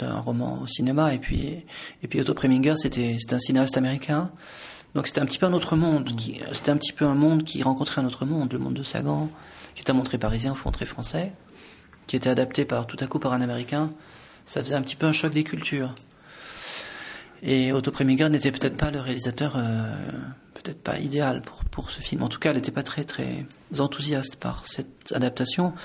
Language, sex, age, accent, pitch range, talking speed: French, male, 30-49, French, 125-150 Hz, 220 wpm